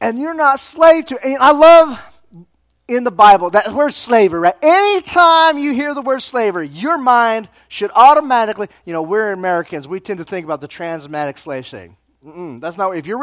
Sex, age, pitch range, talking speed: male, 30-49, 140-225 Hz, 205 wpm